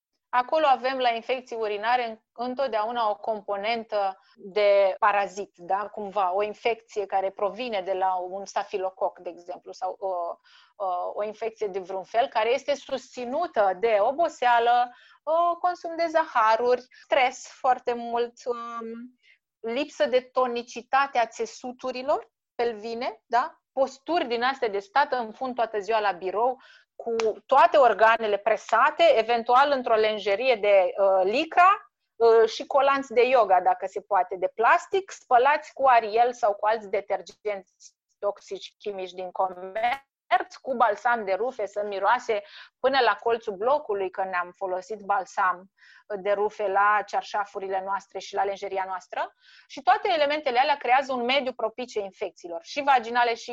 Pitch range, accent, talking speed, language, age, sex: 200-255 Hz, native, 140 wpm, Romanian, 30-49, female